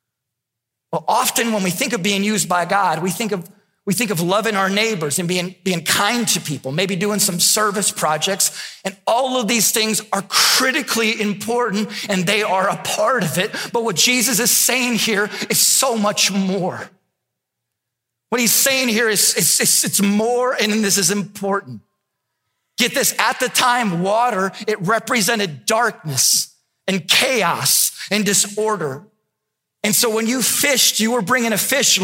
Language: English